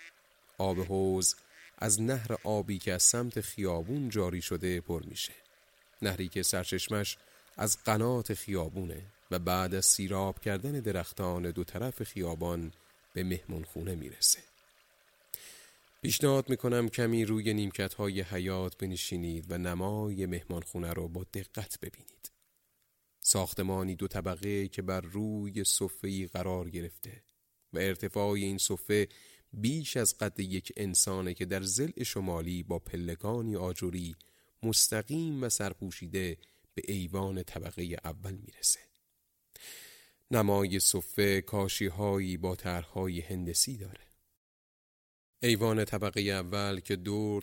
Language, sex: Persian, male